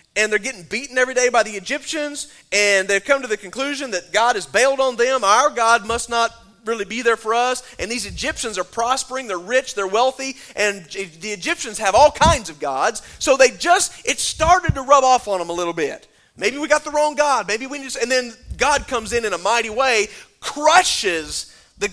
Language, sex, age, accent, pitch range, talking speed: English, male, 30-49, American, 225-305 Hz, 220 wpm